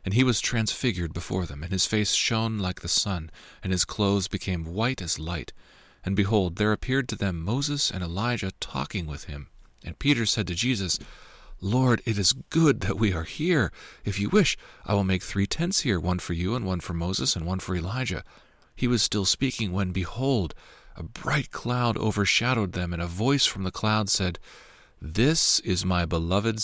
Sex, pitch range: male, 85-115 Hz